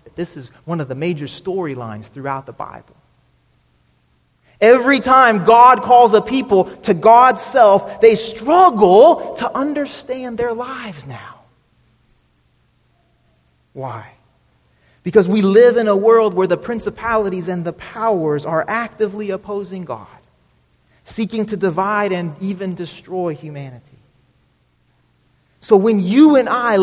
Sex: male